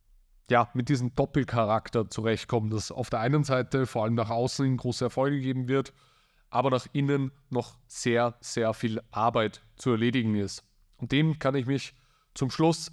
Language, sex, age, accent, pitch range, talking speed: German, male, 30-49, German, 115-135 Hz, 165 wpm